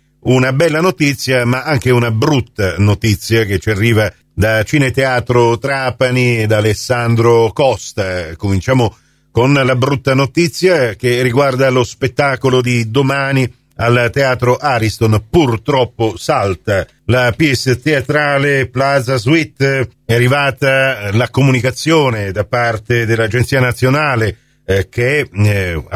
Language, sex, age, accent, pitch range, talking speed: Italian, male, 50-69, native, 110-135 Hz, 115 wpm